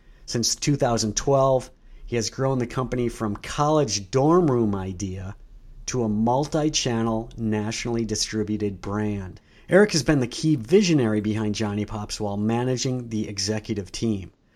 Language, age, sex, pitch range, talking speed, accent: English, 50-69, male, 105-125 Hz, 130 wpm, American